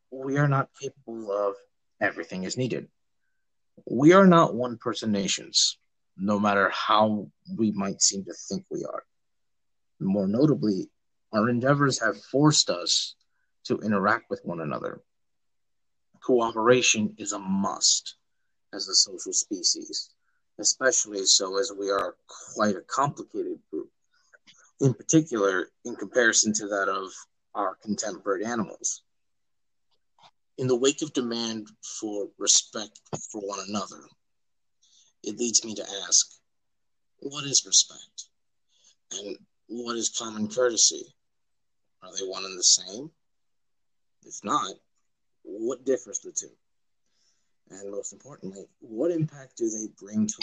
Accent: American